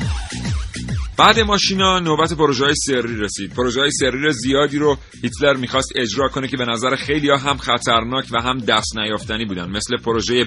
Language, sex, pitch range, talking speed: Persian, male, 115-150 Hz, 165 wpm